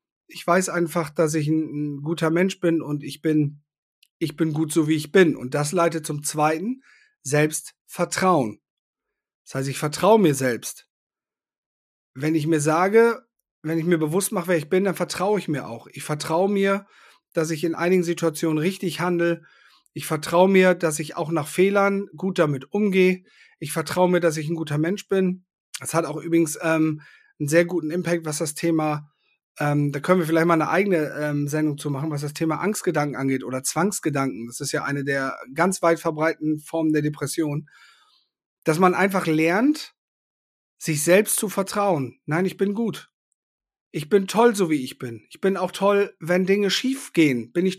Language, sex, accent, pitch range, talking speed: German, male, German, 150-185 Hz, 185 wpm